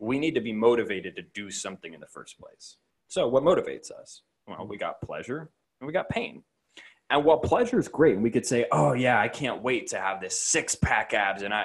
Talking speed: 230 wpm